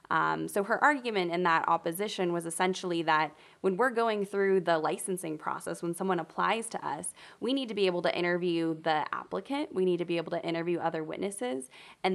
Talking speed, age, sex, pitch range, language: 200 wpm, 20-39, female, 165-190 Hz, English